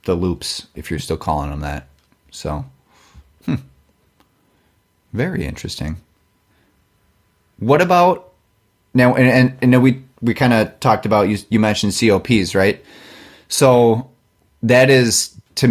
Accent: American